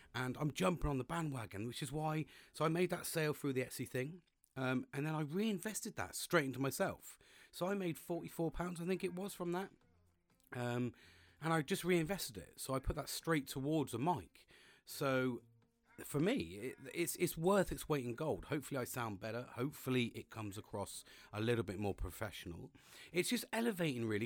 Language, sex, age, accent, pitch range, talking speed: English, male, 40-59, British, 120-165 Hz, 195 wpm